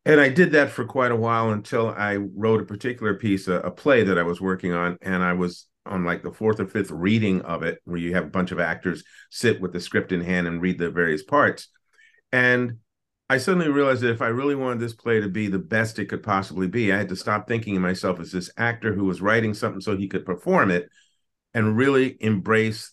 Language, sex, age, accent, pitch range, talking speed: English, male, 50-69, American, 90-115 Hz, 245 wpm